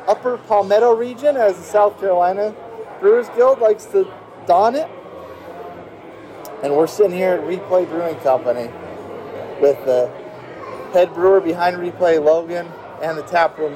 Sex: male